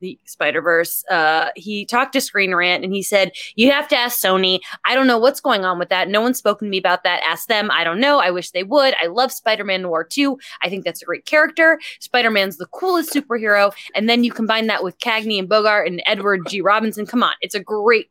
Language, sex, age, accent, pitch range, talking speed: English, female, 20-39, American, 195-265 Hz, 240 wpm